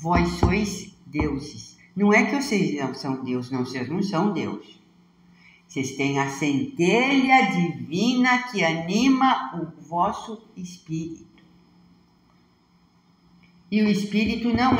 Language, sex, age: Portuguese, female, 60-79